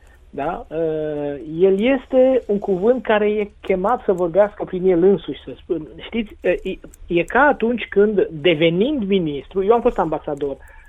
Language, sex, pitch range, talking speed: Romanian, male, 150-210 Hz, 145 wpm